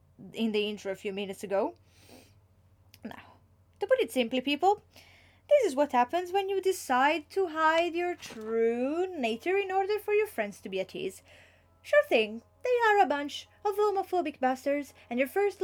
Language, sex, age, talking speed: English, female, 30-49, 175 wpm